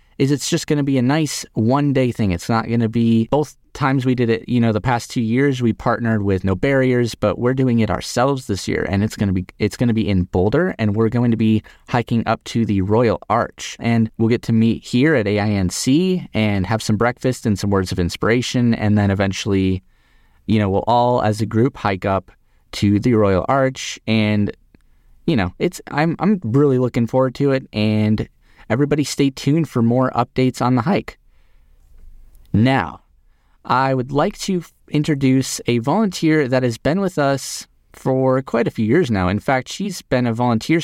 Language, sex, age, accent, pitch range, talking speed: English, male, 30-49, American, 100-130 Hz, 200 wpm